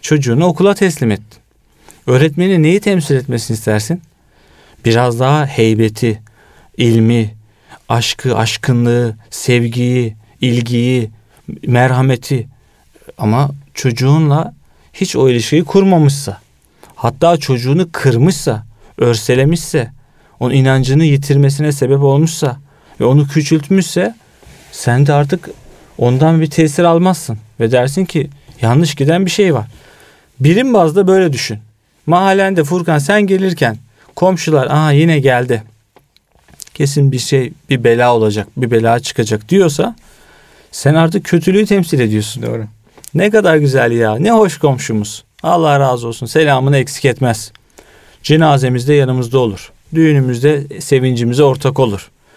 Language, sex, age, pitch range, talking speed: Turkish, male, 40-59, 120-160 Hz, 115 wpm